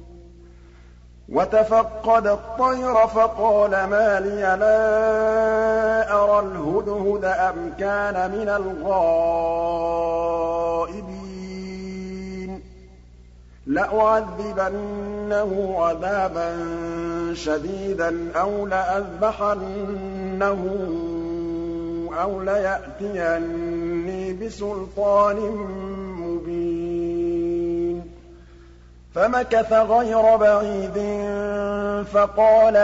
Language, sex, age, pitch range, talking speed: Arabic, male, 50-69, 170-205 Hz, 45 wpm